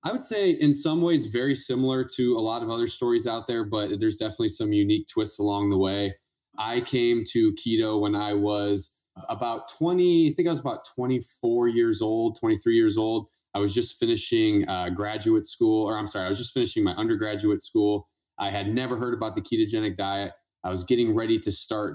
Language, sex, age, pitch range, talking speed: English, male, 20-39, 95-140 Hz, 210 wpm